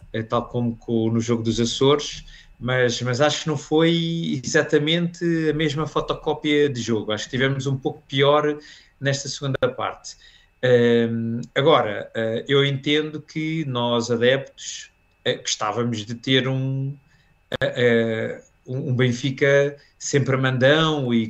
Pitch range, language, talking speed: 115-140 Hz, Portuguese, 130 wpm